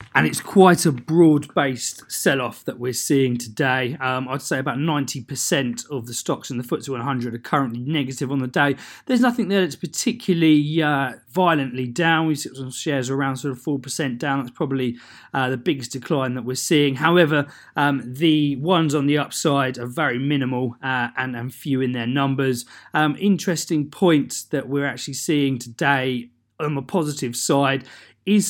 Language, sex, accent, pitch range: English, male, British, 130-155 Hz